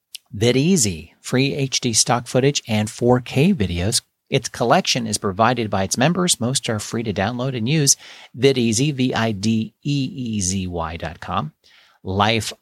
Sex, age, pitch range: male, 40-59, 100-130 Hz